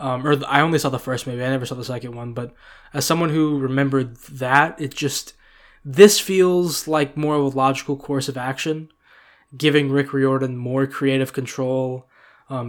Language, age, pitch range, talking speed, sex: English, 10-29, 130-145 Hz, 185 wpm, male